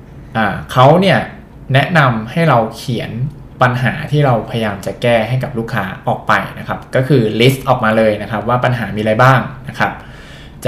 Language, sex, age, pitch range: Thai, male, 20-39, 110-130 Hz